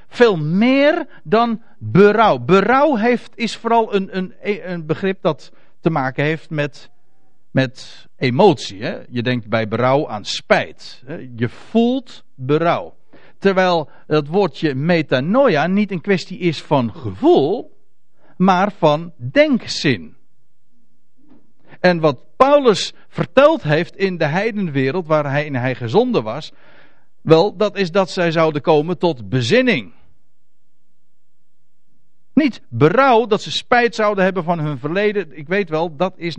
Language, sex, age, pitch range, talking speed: Dutch, male, 50-69, 145-215 Hz, 130 wpm